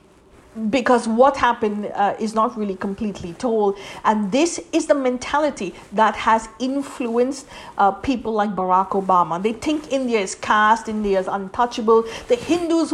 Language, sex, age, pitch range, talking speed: English, female, 50-69, 215-285 Hz, 150 wpm